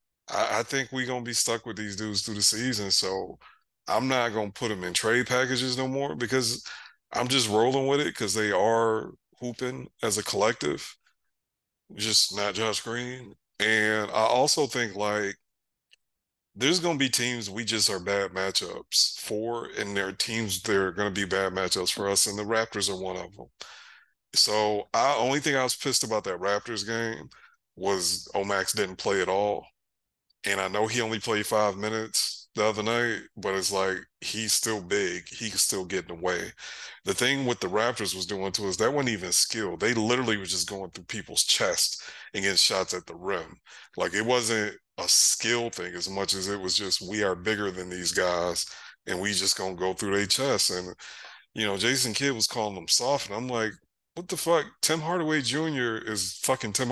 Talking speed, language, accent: 200 wpm, English, American